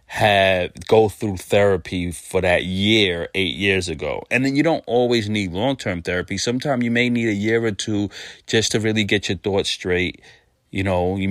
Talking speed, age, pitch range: 190 wpm, 30-49, 95-105 Hz